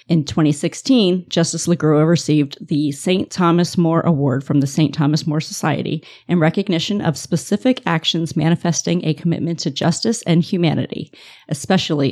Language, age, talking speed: English, 40-59, 145 wpm